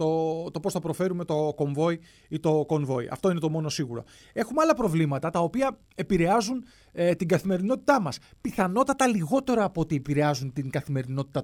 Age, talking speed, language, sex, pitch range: 30-49, 170 wpm, Greek, male, 140-205 Hz